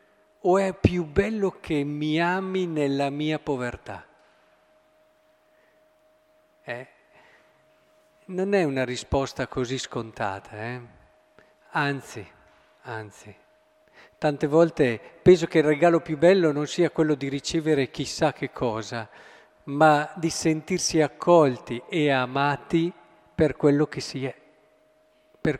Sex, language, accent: male, Italian, native